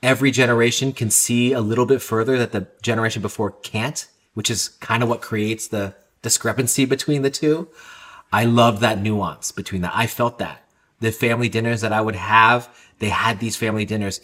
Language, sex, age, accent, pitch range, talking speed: English, male, 30-49, American, 100-120 Hz, 190 wpm